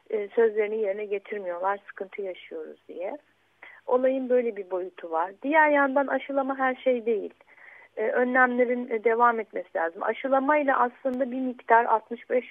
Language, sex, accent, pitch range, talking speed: Turkish, female, native, 210-275 Hz, 125 wpm